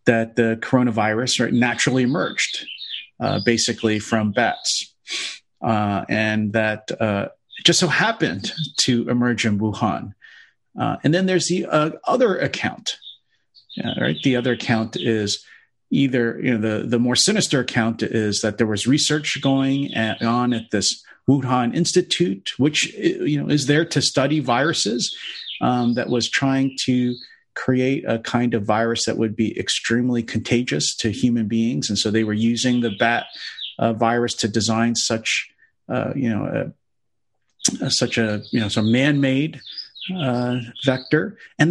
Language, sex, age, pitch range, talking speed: English, male, 40-59, 115-155 Hz, 150 wpm